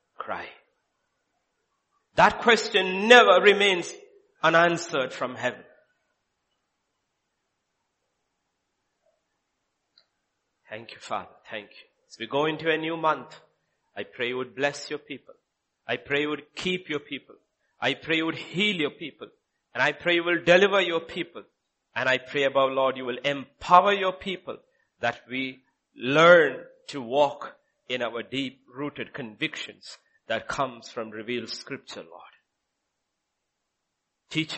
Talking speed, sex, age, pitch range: 130 wpm, male, 50-69, 130-175 Hz